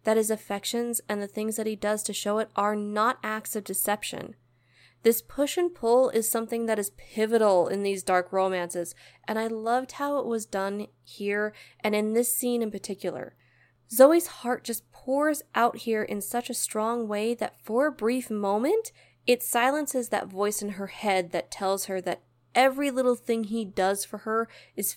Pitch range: 200-245 Hz